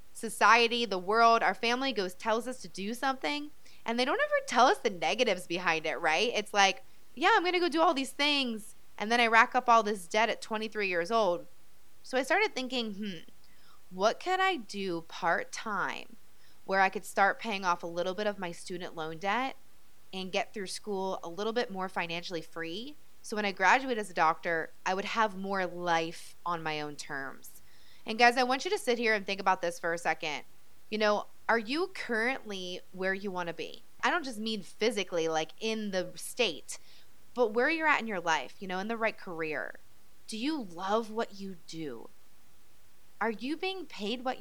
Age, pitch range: 20-39, 185-245 Hz